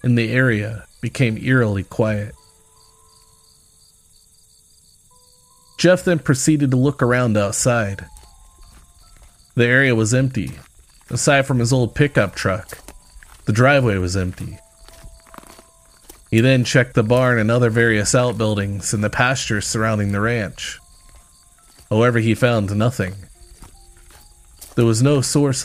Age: 40-59